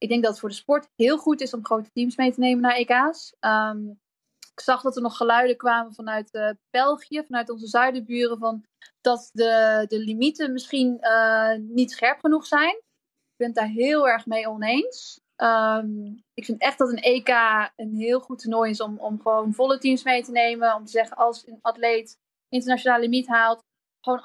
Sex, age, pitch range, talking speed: female, 20-39, 225-255 Hz, 195 wpm